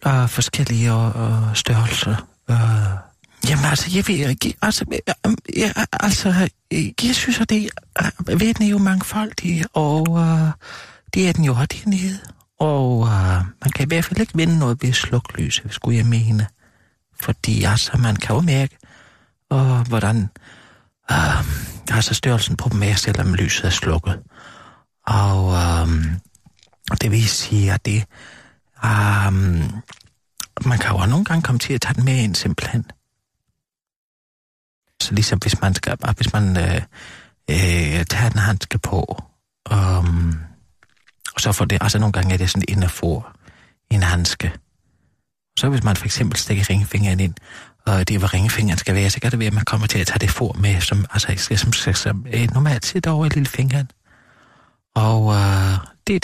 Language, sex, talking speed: Danish, male, 165 wpm